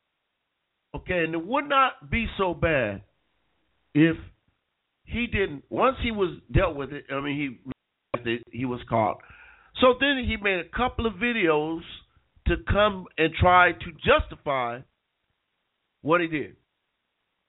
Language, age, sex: English, 50-69, male